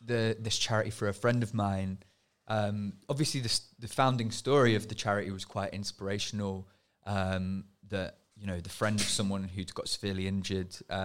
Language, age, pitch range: English, 20-39, 105-130 Hz